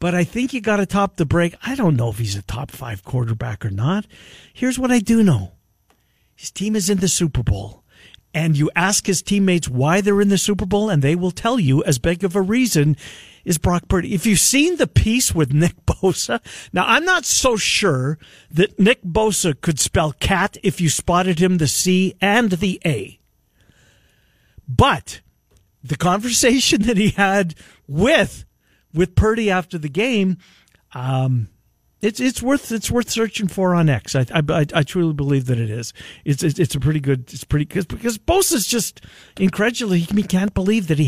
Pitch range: 140-205 Hz